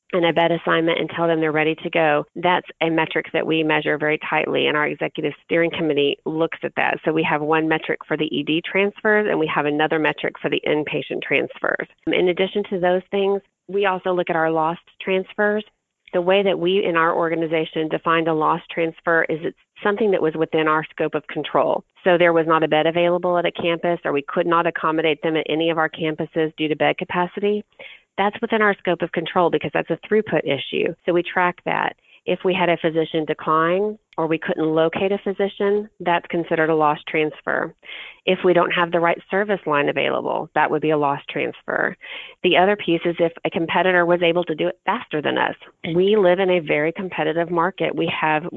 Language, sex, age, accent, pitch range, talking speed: English, female, 30-49, American, 155-180 Hz, 215 wpm